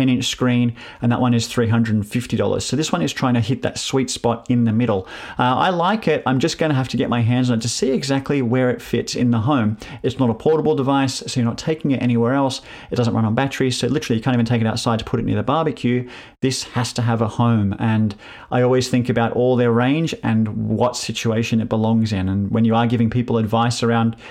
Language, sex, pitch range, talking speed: English, male, 115-130 Hz, 255 wpm